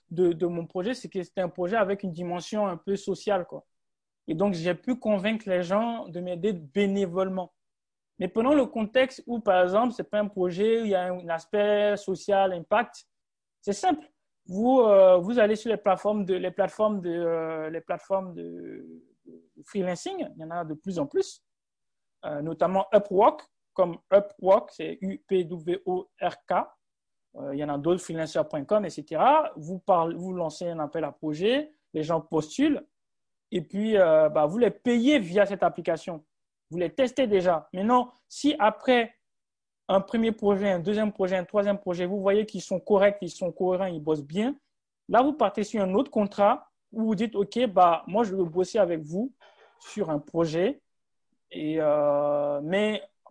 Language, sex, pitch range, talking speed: English, male, 175-215 Hz, 180 wpm